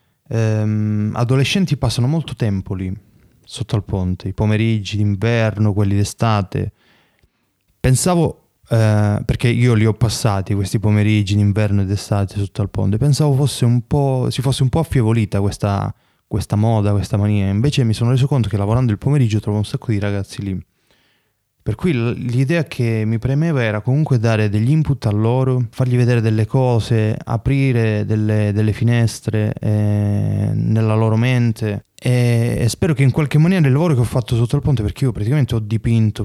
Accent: native